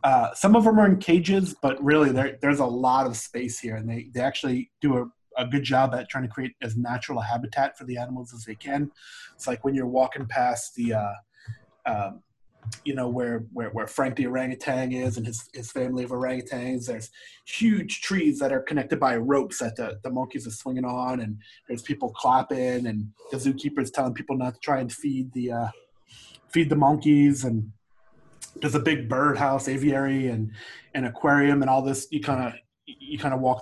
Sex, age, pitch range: male, 20-39, 120-140 Hz